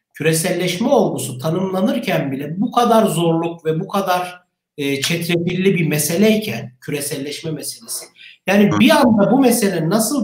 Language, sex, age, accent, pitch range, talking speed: Turkish, male, 60-79, native, 175-225 Hz, 130 wpm